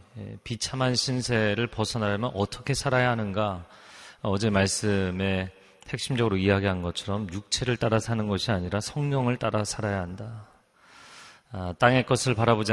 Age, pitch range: 30-49, 100-120 Hz